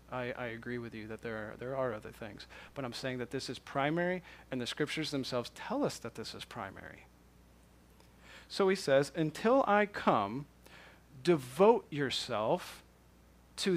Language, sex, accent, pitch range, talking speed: English, male, American, 115-150 Hz, 165 wpm